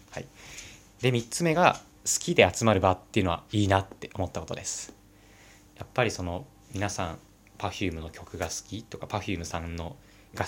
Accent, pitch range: native, 95-105 Hz